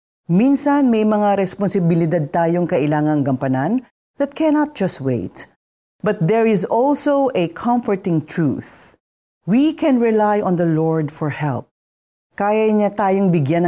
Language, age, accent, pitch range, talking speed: Filipino, 40-59, native, 155-220 Hz, 130 wpm